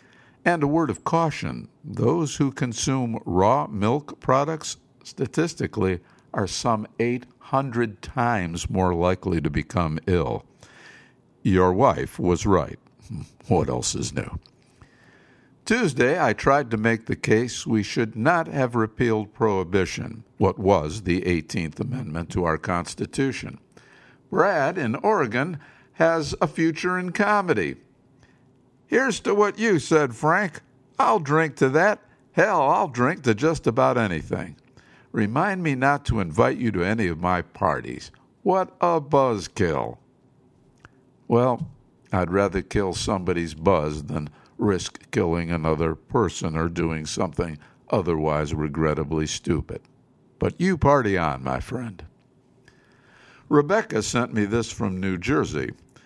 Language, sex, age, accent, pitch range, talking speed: English, male, 60-79, American, 90-140 Hz, 125 wpm